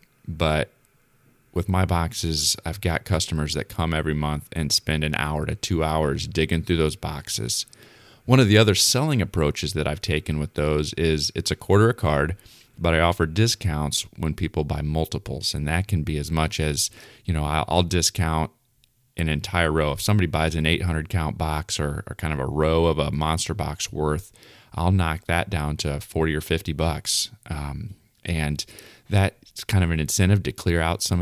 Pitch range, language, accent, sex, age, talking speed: 75-100 Hz, English, American, male, 30-49, 195 wpm